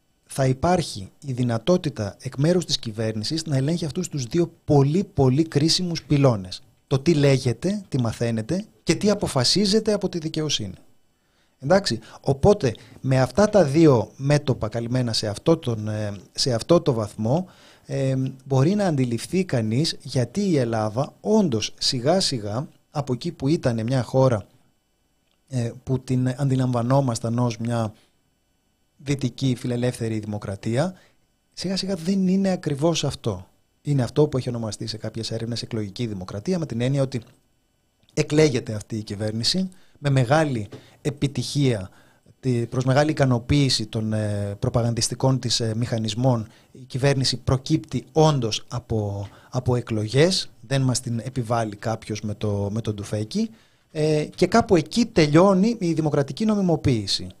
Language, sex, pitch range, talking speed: Greek, male, 115-155 Hz, 130 wpm